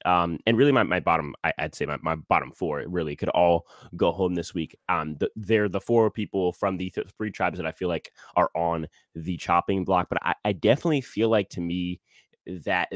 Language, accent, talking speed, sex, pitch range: English, American, 230 wpm, male, 85-105 Hz